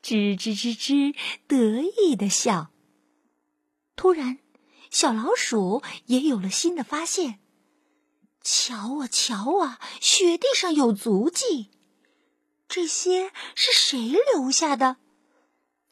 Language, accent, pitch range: Chinese, native, 170-265 Hz